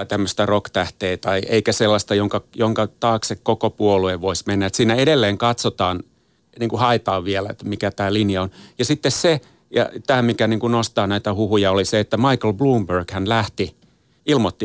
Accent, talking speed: native, 180 wpm